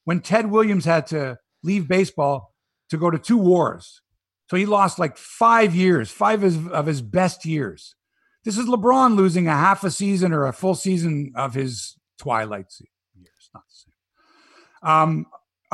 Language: English